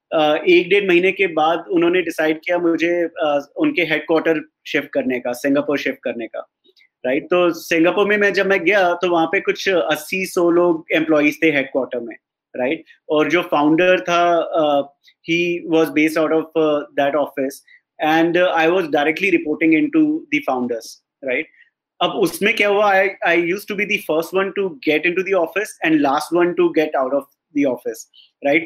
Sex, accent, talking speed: male, native, 175 wpm